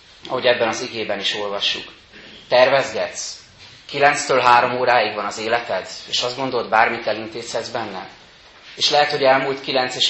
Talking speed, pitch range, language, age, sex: 150 wpm, 105-130 Hz, Hungarian, 30-49, male